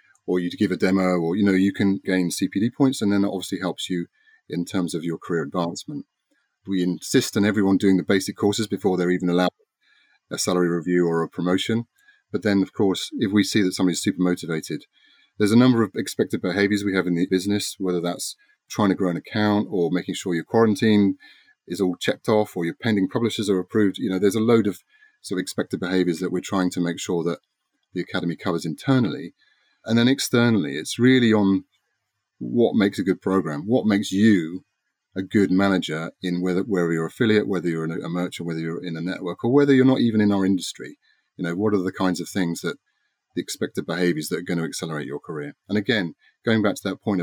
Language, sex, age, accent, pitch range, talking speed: English, male, 30-49, British, 90-110 Hz, 220 wpm